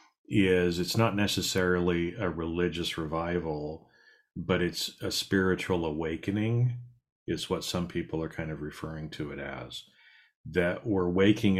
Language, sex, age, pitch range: English, male, 40-59, 80-95 Hz